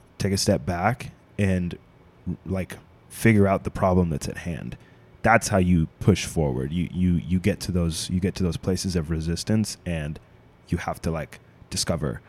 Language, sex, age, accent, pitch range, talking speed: English, male, 20-39, American, 90-105 Hz, 180 wpm